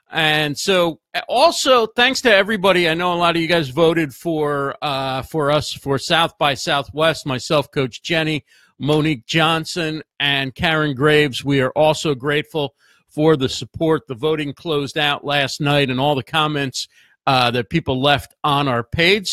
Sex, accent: male, American